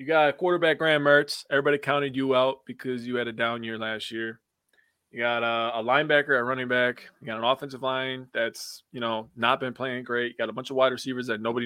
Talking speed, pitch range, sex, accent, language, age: 235 wpm, 120-145 Hz, male, American, English, 20-39